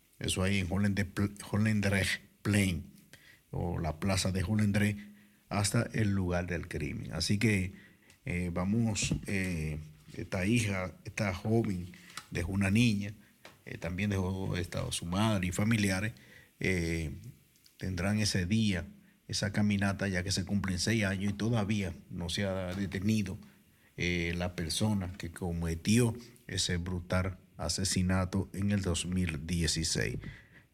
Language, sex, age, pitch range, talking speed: Dutch, male, 50-69, 90-105 Hz, 125 wpm